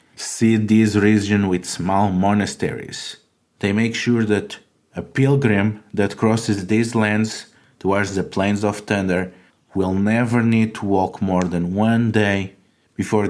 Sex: male